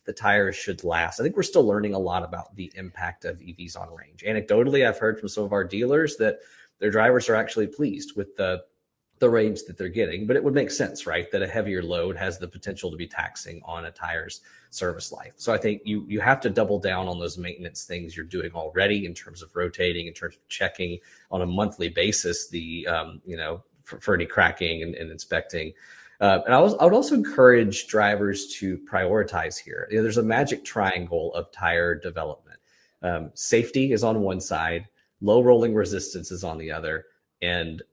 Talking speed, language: 210 wpm, English